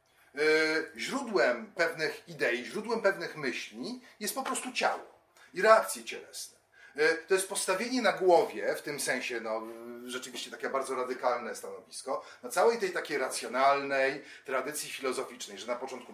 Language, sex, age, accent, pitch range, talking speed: Polish, male, 40-59, native, 160-235 Hz, 140 wpm